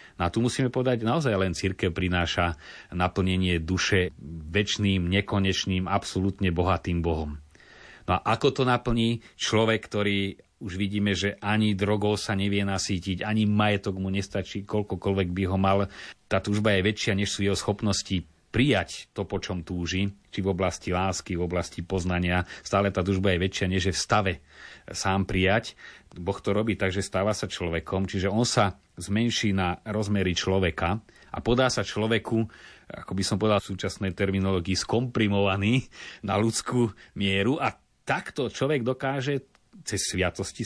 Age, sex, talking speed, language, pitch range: 30-49, male, 155 wpm, Slovak, 95-110 Hz